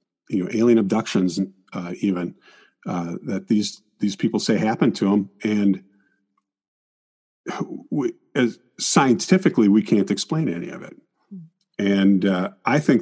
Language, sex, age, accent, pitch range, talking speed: English, male, 50-69, American, 95-110 Hz, 135 wpm